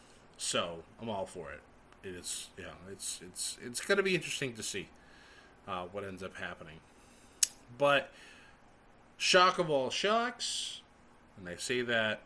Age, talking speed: 30-49, 145 wpm